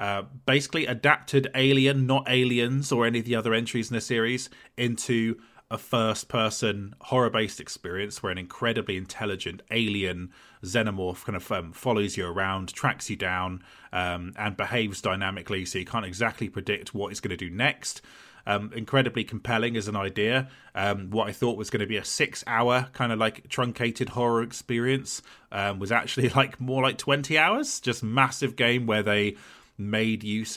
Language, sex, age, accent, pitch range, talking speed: English, male, 30-49, British, 100-120 Hz, 170 wpm